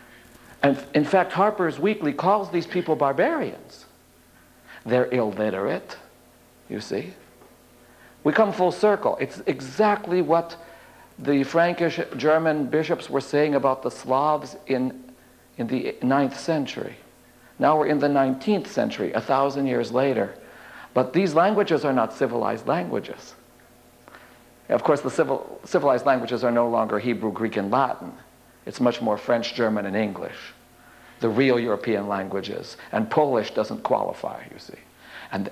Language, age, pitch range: English, 60-79, 115-155 Hz